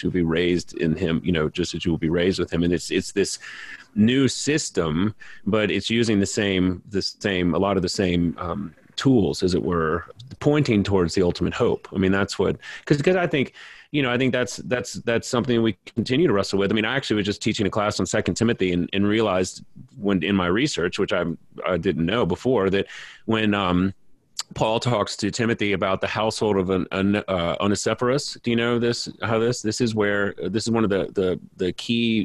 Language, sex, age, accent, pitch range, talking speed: English, male, 30-49, American, 90-110 Hz, 225 wpm